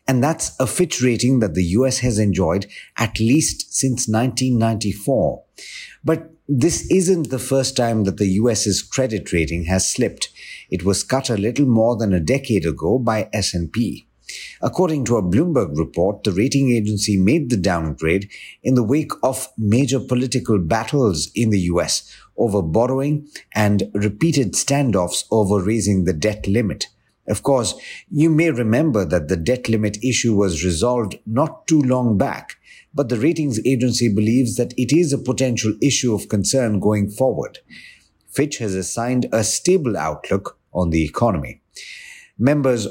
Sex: male